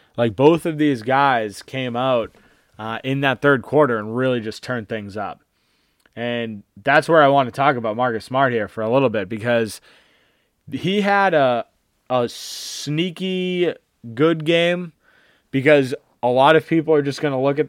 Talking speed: 175 wpm